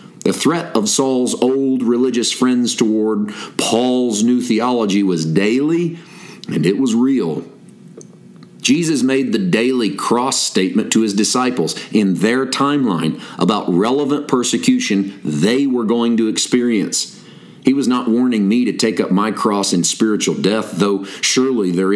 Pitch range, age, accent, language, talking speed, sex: 100-135 Hz, 40-59, American, English, 145 wpm, male